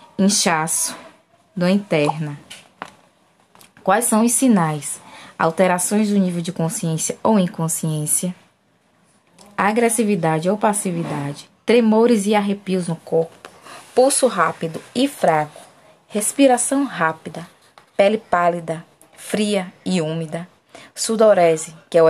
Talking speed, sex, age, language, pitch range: 100 wpm, female, 20-39, Portuguese, 165-220 Hz